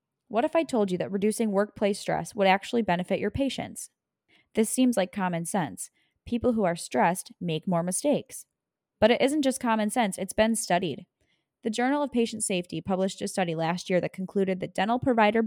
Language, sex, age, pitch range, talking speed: English, female, 10-29, 185-250 Hz, 195 wpm